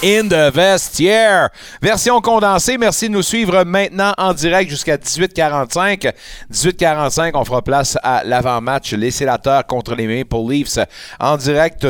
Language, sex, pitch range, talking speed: French, male, 135-180 Hz, 135 wpm